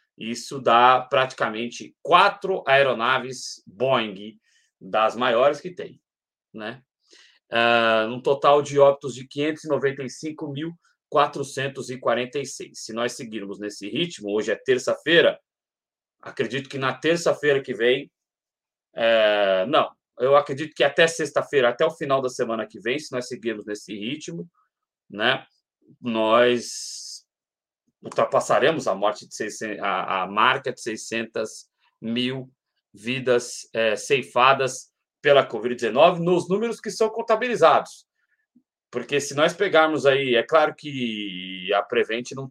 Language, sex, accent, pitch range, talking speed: Portuguese, male, Brazilian, 115-145 Hz, 115 wpm